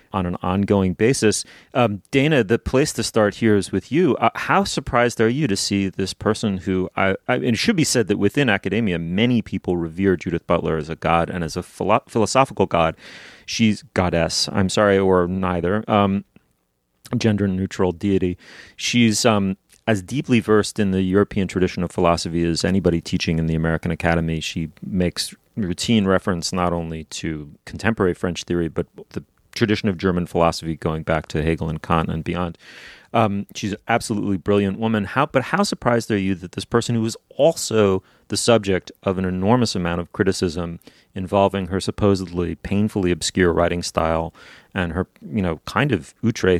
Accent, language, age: American, English, 30-49